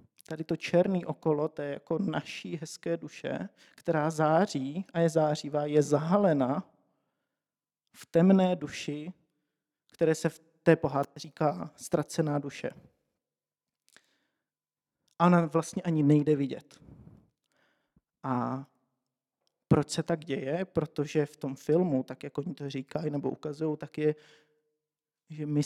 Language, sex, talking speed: Czech, male, 125 wpm